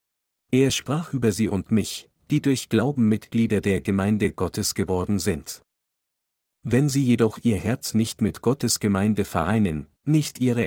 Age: 40-59